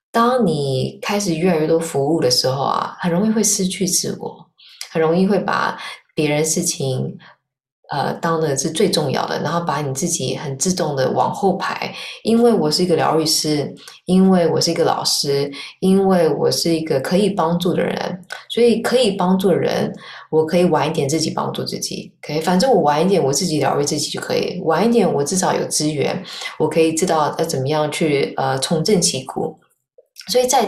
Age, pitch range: 20-39, 150-185 Hz